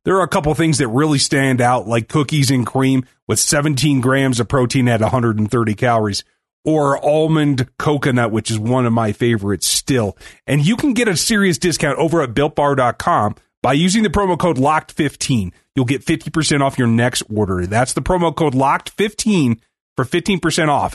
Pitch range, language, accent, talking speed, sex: 125-165 Hz, English, American, 180 wpm, male